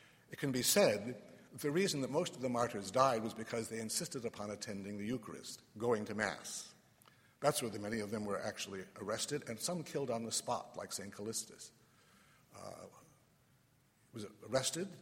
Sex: male